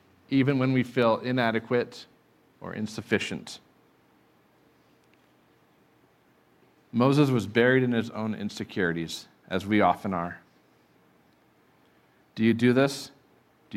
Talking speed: 100 wpm